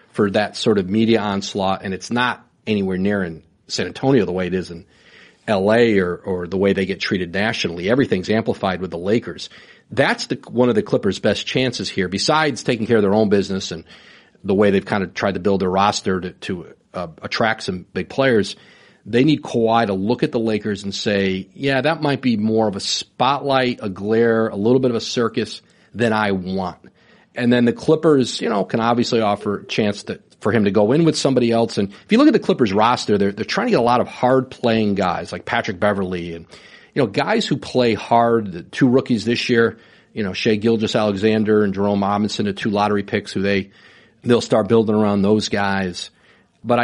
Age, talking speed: 40-59, 215 wpm